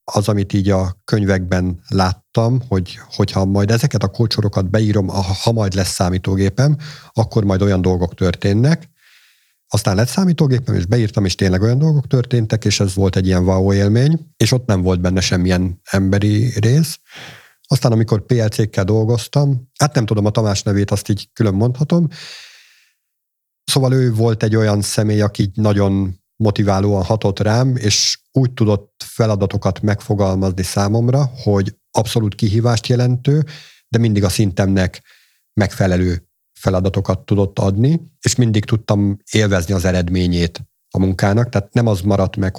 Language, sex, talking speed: Hungarian, male, 145 wpm